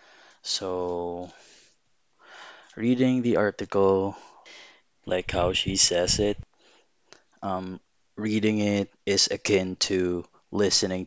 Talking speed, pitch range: 85 wpm, 90-100 Hz